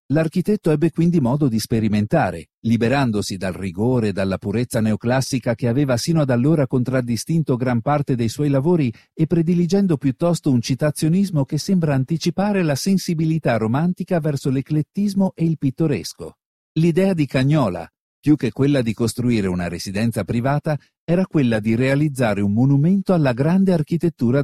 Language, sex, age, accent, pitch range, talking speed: Italian, male, 50-69, native, 115-165 Hz, 145 wpm